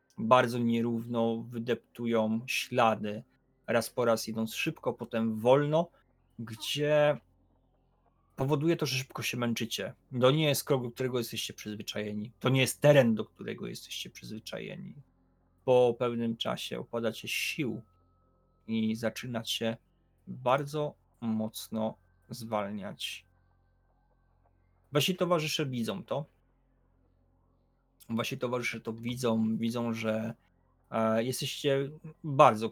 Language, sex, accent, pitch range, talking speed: Polish, male, native, 90-125 Hz, 100 wpm